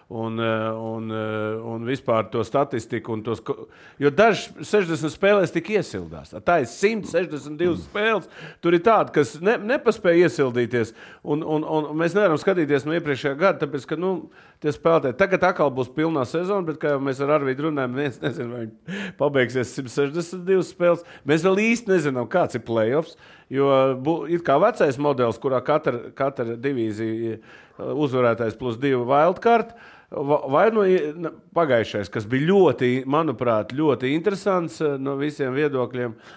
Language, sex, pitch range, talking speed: English, male, 120-165 Hz, 150 wpm